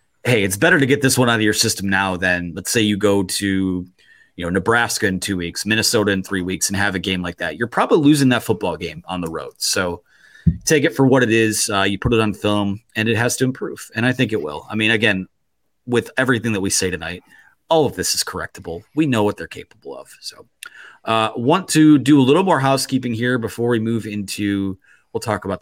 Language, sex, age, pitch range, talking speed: English, male, 30-49, 100-135 Hz, 240 wpm